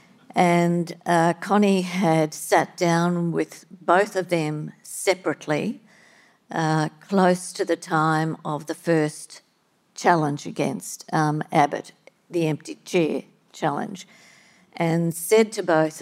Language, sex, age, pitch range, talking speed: English, female, 50-69, 165-195 Hz, 115 wpm